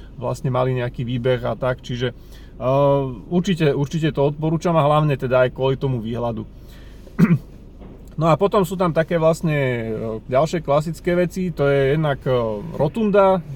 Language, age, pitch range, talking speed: Slovak, 30-49, 115-150 Hz, 145 wpm